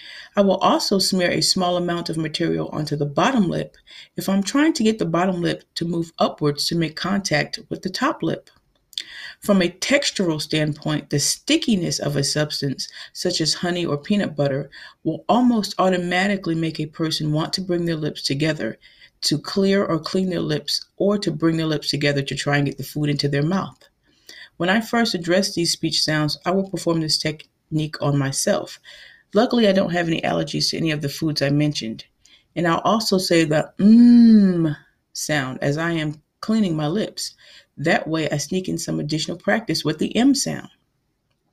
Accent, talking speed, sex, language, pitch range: American, 190 wpm, female, English, 150-195 Hz